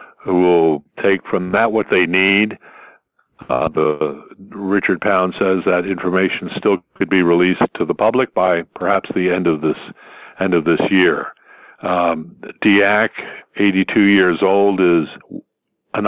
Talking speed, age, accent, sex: 140 wpm, 50-69, American, male